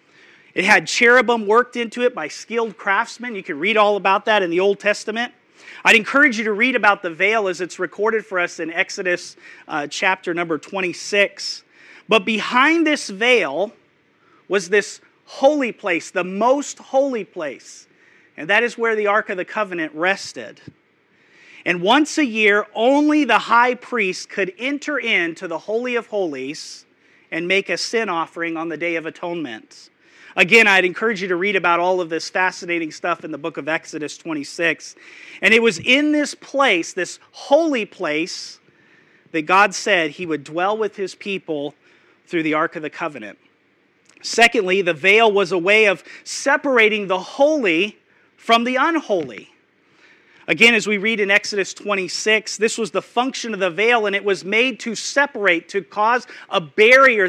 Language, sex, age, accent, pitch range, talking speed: English, male, 40-59, American, 180-235 Hz, 170 wpm